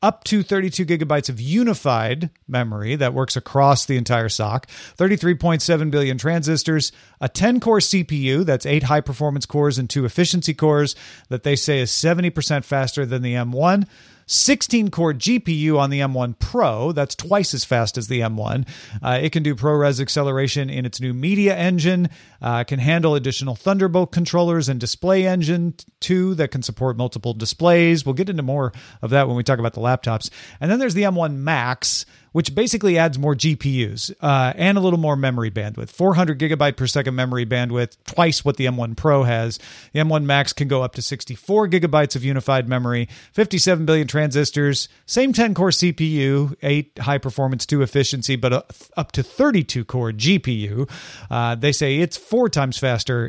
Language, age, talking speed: English, 40-59, 175 wpm